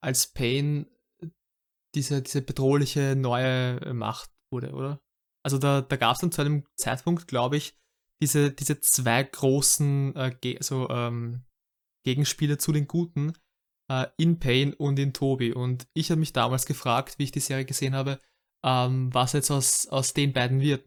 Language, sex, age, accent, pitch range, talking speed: German, male, 20-39, German, 130-150 Hz, 165 wpm